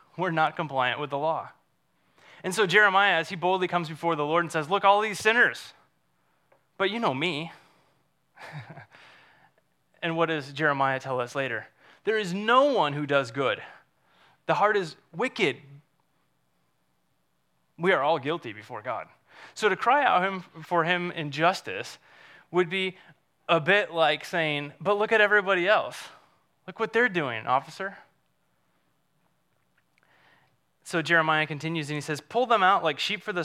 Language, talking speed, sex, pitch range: English, 155 wpm, male, 140-185 Hz